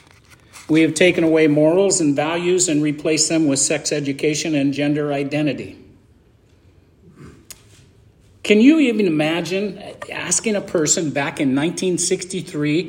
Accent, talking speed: American, 120 wpm